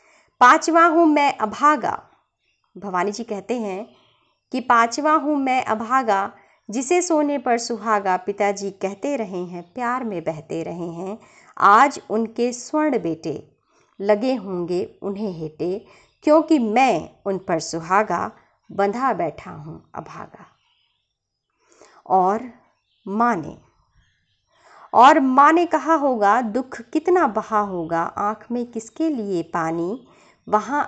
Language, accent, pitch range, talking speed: Hindi, native, 185-275 Hz, 120 wpm